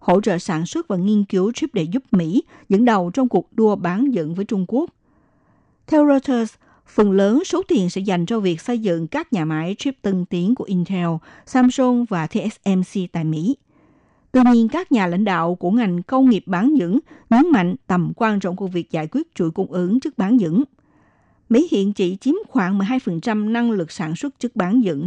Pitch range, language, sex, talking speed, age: 180-250 Hz, Vietnamese, female, 205 wpm, 60-79